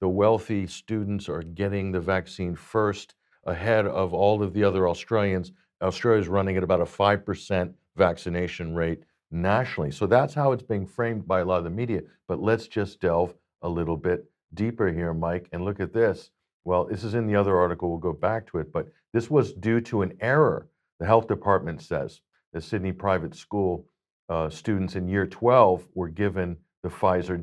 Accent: American